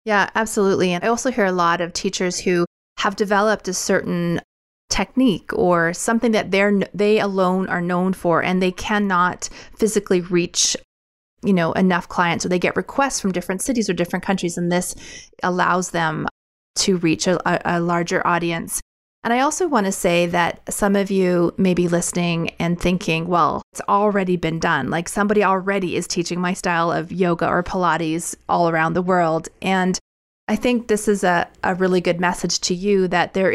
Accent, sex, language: American, female, English